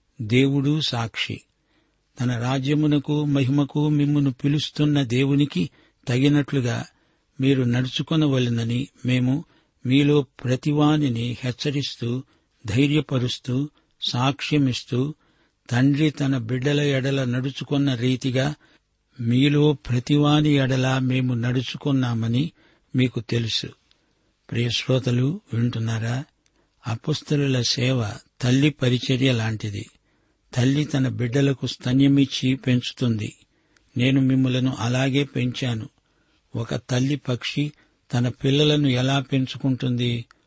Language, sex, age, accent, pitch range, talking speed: Telugu, male, 60-79, native, 125-140 Hz, 80 wpm